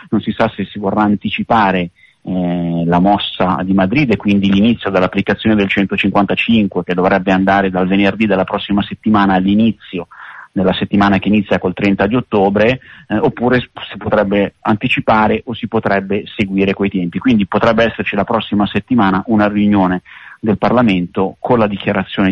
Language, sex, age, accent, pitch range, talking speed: Italian, male, 30-49, native, 95-110 Hz, 160 wpm